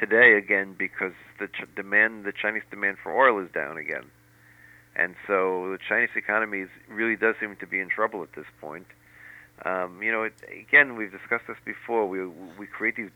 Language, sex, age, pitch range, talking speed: English, male, 50-69, 85-110 Hz, 195 wpm